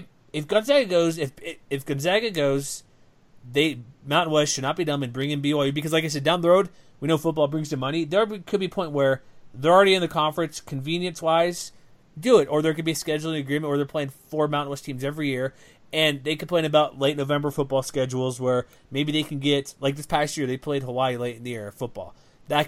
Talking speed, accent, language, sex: 235 wpm, American, English, male